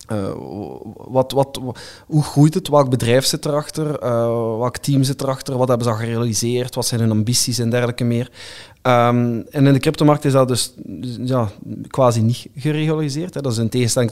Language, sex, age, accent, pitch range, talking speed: Dutch, male, 20-39, Dutch, 115-140 Hz, 190 wpm